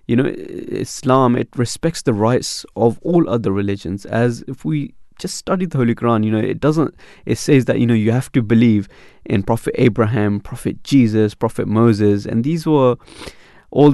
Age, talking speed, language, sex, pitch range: 20-39, 185 wpm, English, male, 110-145 Hz